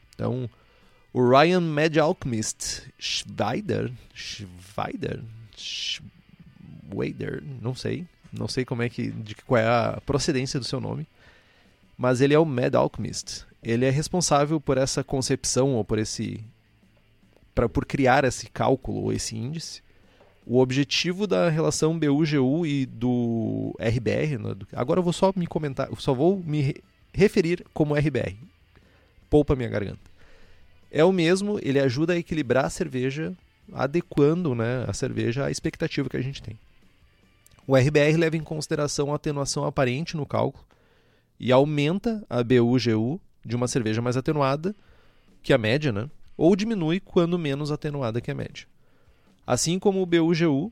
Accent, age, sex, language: Brazilian, 30-49, male, Portuguese